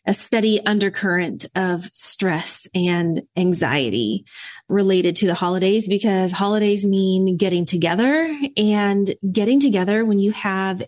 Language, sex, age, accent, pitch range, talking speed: English, female, 20-39, American, 190-230 Hz, 120 wpm